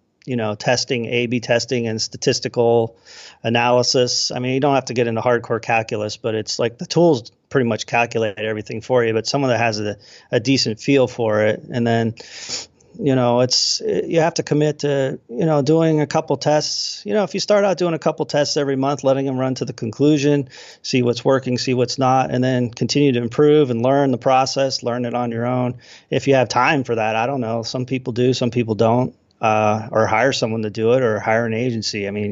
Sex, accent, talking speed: male, American, 225 wpm